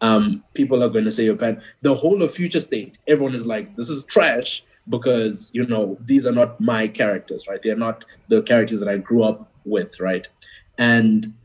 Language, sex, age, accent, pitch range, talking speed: English, male, 20-39, South African, 110-135 Hz, 210 wpm